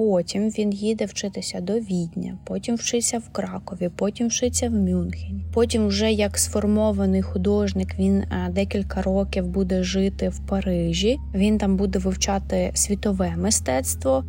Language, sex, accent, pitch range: Ukrainian, female, native, 180-230 Hz